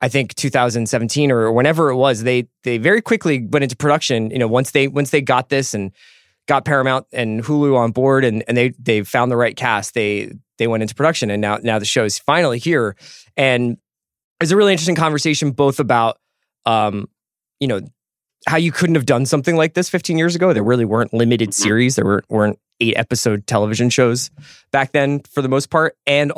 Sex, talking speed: male, 210 wpm